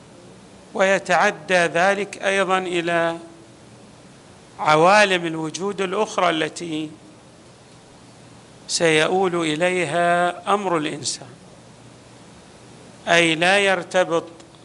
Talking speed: 60 wpm